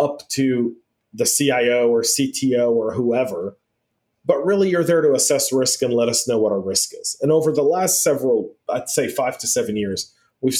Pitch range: 120-150 Hz